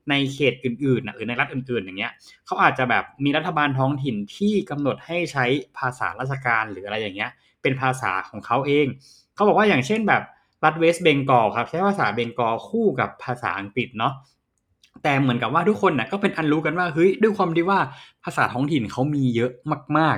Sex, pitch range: male, 125-165 Hz